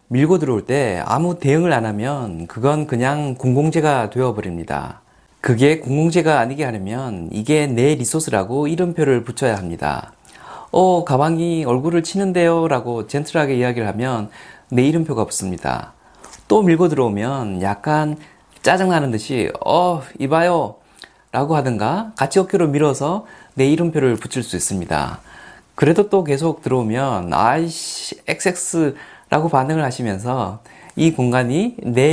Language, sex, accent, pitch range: Korean, male, native, 120-165 Hz